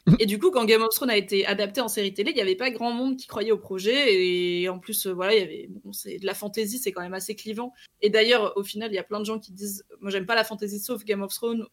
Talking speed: 310 wpm